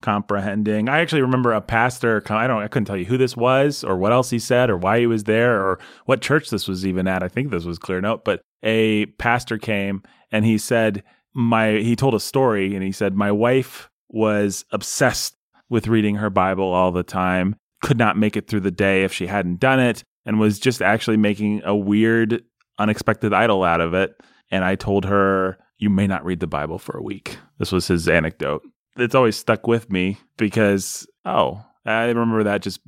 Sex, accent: male, American